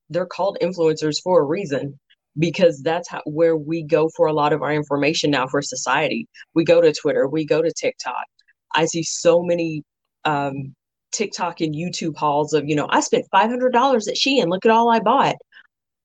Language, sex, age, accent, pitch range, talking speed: English, female, 30-49, American, 155-210 Hz, 200 wpm